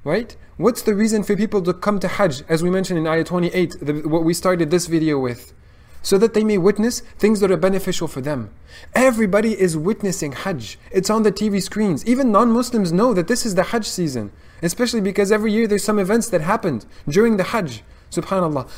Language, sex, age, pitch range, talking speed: English, male, 20-39, 150-205 Hz, 205 wpm